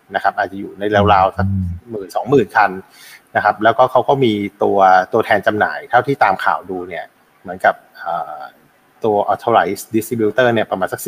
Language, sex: Thai, male